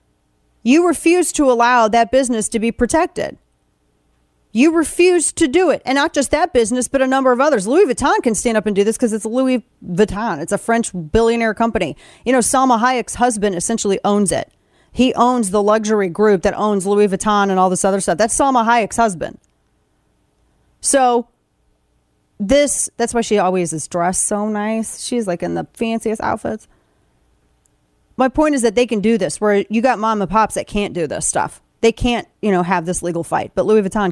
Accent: American